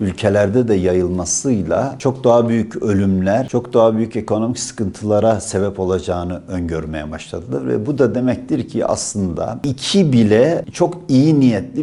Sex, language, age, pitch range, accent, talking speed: male, Turkish, 50-69, 100-135 Hz, native, 135 wpm